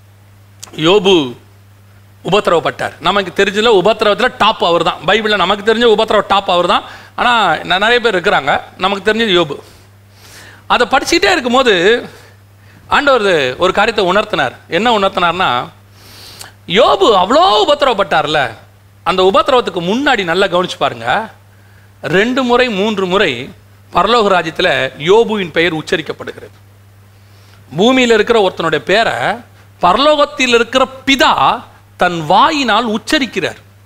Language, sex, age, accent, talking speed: Tamil, male, 40-59, native, 105 wpm